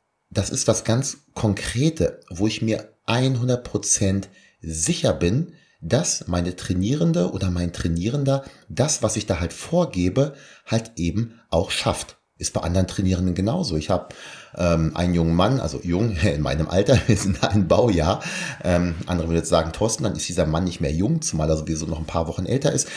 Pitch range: 85-115 Hz